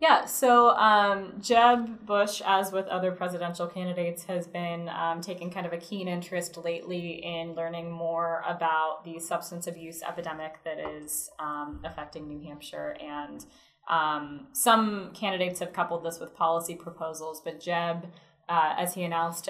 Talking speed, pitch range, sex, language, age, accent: 155 wpm, 165-195 Hz, female, English, 10-29, American